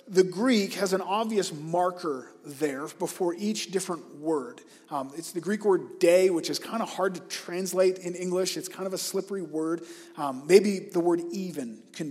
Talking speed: 190 wpm